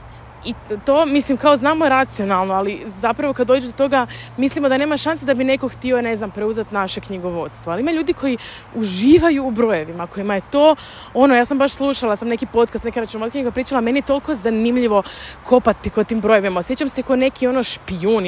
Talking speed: 205 wpm